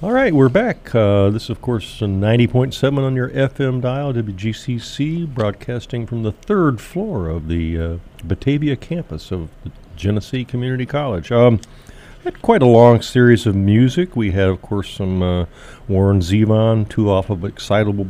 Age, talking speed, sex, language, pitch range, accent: 50-69, 170 wpm, male, English, 95-130 Hz, American